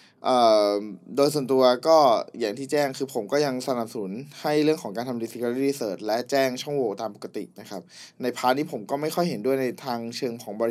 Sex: male